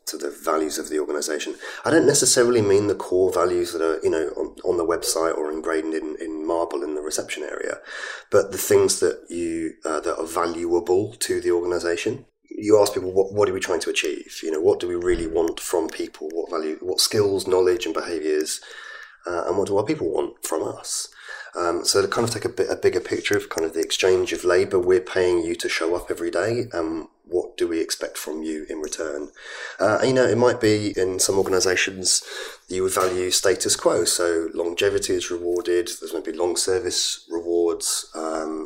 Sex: male